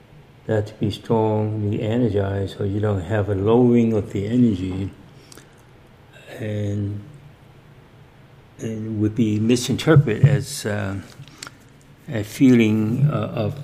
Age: 60-79